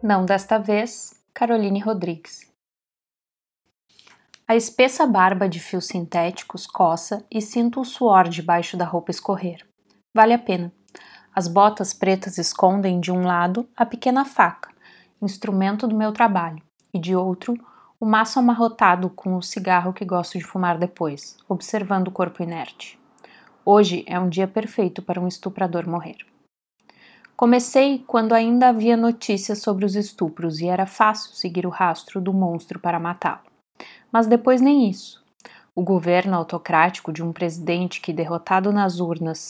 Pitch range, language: 180-220 Hz, Portuguese